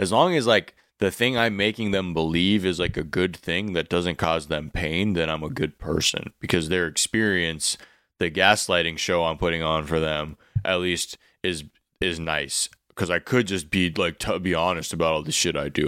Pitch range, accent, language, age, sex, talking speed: 85-110 Hz, American, English, 20-39, male, 210 wpm